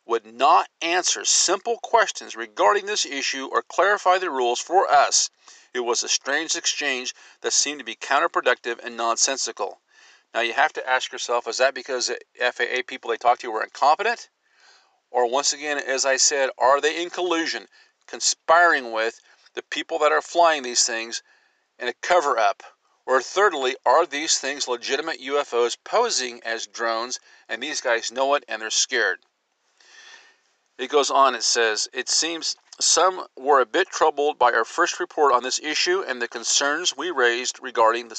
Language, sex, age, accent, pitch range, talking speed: English, male, 50-69, American, 125-180 Hz, 170 wpm